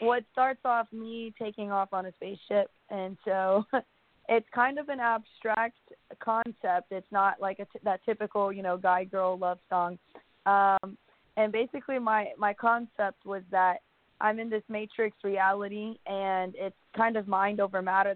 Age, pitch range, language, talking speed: 20-39, 190-220 Hz, English, 170 wpm